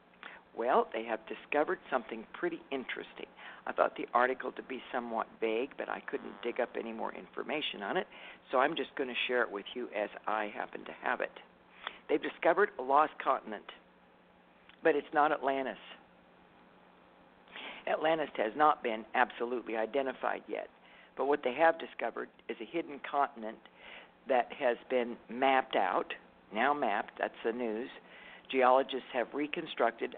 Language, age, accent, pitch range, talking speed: English, 50-69, American, 105-135 Hz, 155 wpm